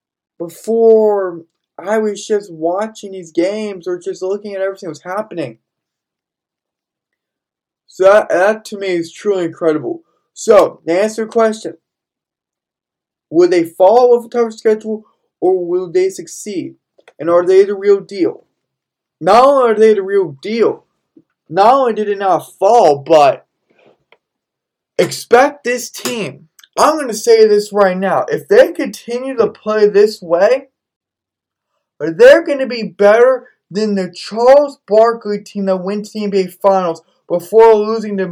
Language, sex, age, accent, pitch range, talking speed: English, male, 20-39, American, 190-245 Hz, 150 wpm